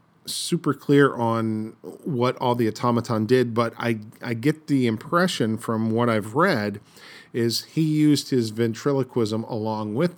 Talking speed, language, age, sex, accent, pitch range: 145 wpm, English, 40-59, male, American, 105-125 Hz